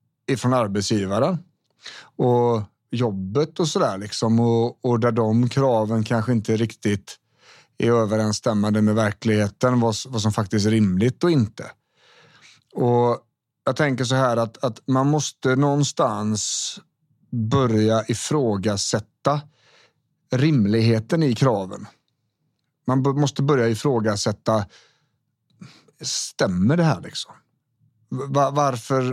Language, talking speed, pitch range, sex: Swedish, 105 wpm, 110-135 Hz, male